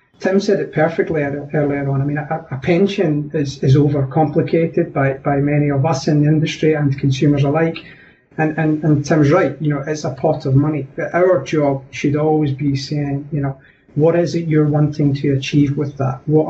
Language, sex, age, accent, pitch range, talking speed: English, male, 30-49, British, 140-155 Hz, 200 wpm